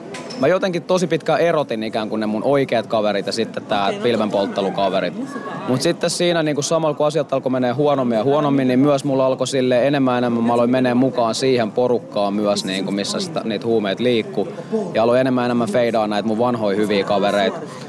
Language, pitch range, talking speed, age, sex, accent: Finnish, 110-145 Hz, 200 wpm, 20-39, male, native